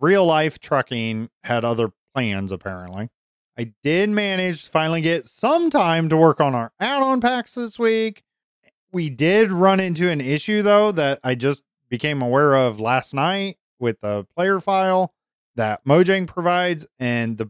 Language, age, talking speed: English, 30-49, 160 wpm